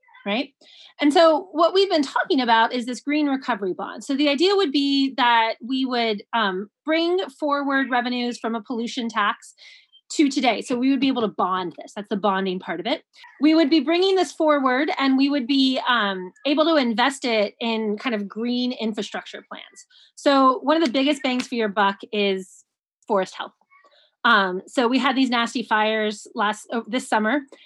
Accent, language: American, English